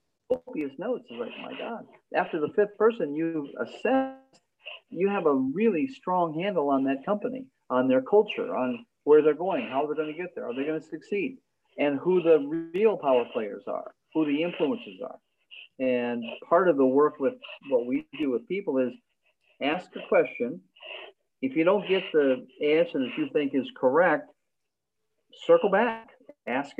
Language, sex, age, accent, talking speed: English, male, 50-69, American, 175 wpm